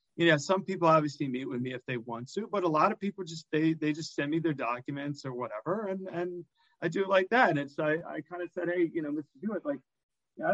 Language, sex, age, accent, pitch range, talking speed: English, male, 40-59, American, 140-175 Hz, 275 wpm